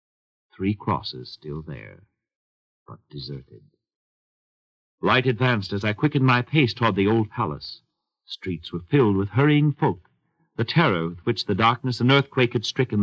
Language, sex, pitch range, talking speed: English, male, 90-140 Hz, 150 wpm